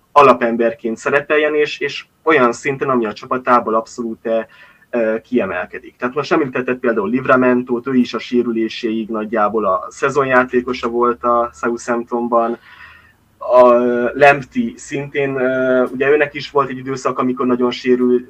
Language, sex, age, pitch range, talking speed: Hungarian, male, 20-39, 120-140 Hz, 130 wpm